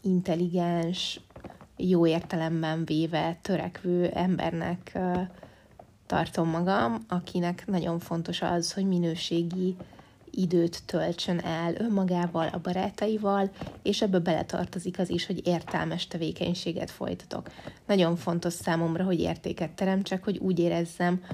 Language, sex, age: Hungarian, female, 20-39